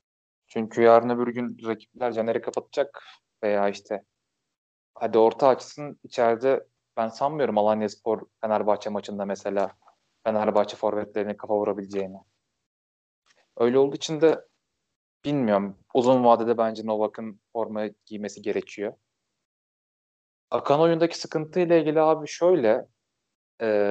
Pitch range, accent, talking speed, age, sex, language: 110-150 Hz, native, 110 wpm, 20-39, male, Turkish